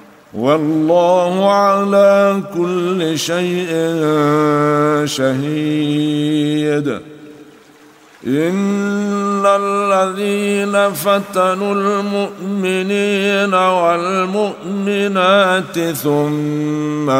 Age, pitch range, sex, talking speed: 60-79, 150-190 Hz, male, 40 wpm